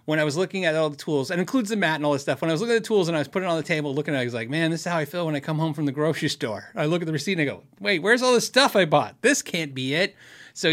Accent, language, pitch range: American, English, 130-170 Hz